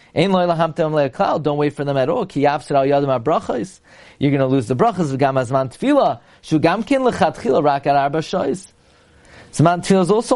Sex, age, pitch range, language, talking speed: male, 30-49, 145-185 Hz, English, 230 wpm